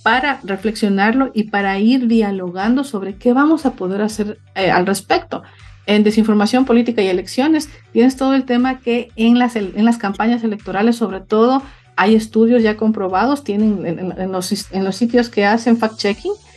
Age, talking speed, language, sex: 50-69, 160 wpm, Spanish, female